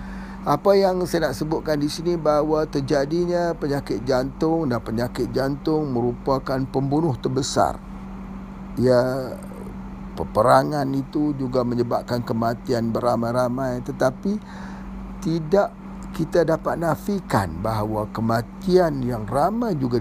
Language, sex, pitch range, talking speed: Indonesian, male, 115-175 Hz, 100 wpm